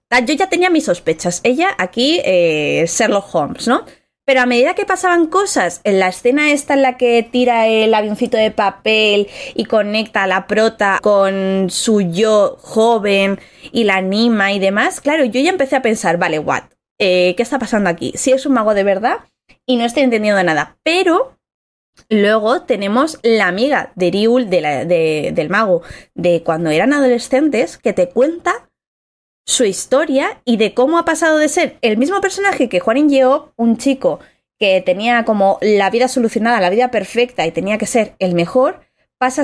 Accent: Spanish